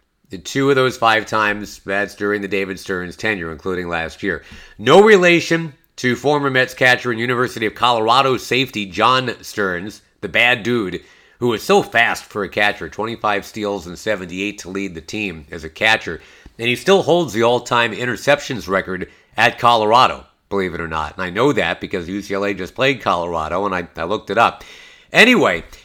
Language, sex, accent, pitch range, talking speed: English, male, American, 100-130 Hz, 180 wpm